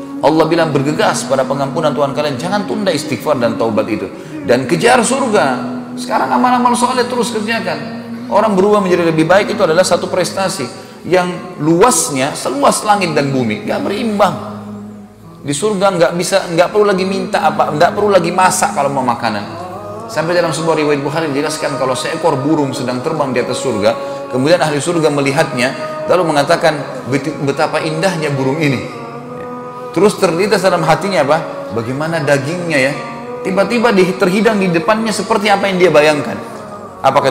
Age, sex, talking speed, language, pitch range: 30-49, male, 155 wpm, Indonesian, 145-205 Hz